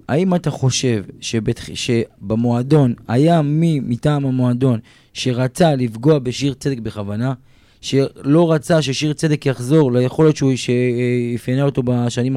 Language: Hebrew